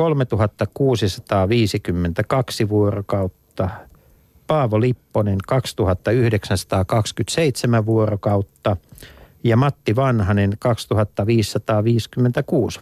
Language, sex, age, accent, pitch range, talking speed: Finnish, male, 50-69, native, 100-120 Hz, 45 wpm